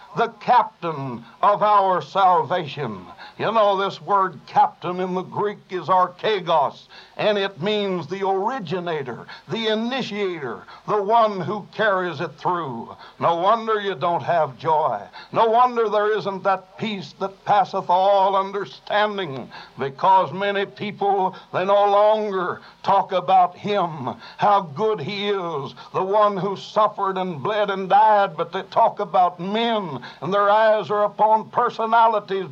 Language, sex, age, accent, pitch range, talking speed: English, male, 60-79, American, 185-210 Hz, 140 wpm